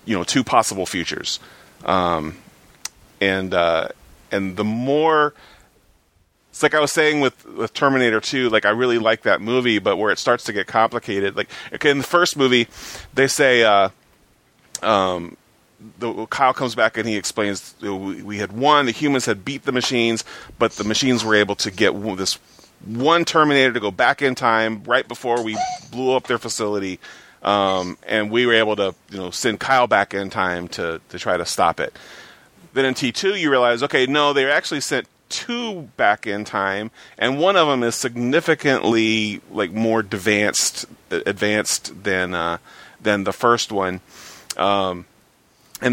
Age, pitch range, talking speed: 30-49, 95-130 Hz, 175 wpm